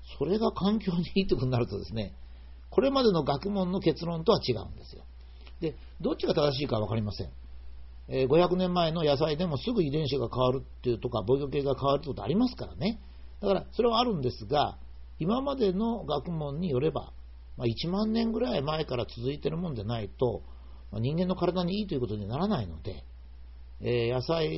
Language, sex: Japanese, male